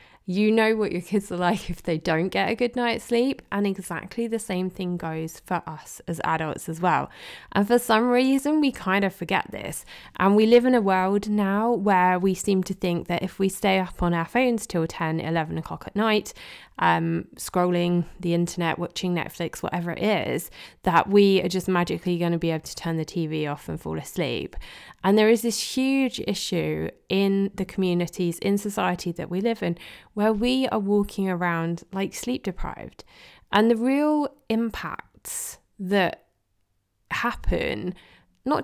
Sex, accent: female, British